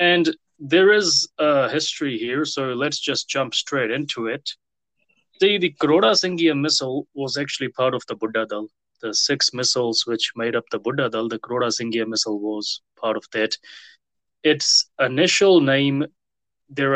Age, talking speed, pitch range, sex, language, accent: 20-39, 155 wpm, 115-145 Hz, male, English, Indian